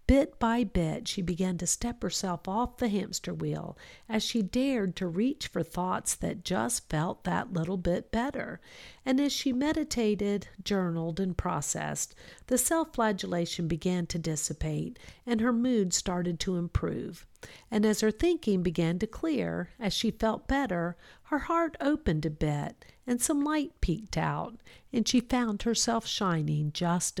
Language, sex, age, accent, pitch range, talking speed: English, female, 50-69, American, 170-240 Hz, 155 wpm